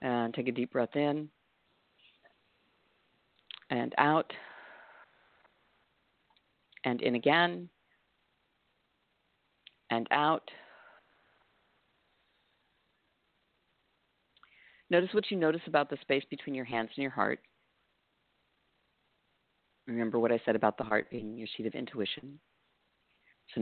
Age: 50-69